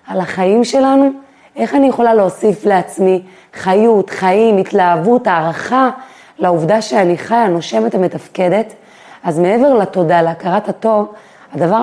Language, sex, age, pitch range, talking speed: Hebrew, female, 30-49, 180-220 Hz, 115 wpm